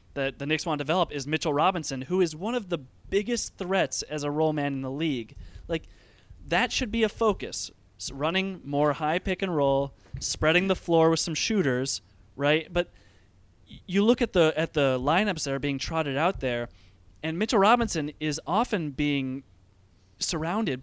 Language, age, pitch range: English, 20-39, 125-170 Hz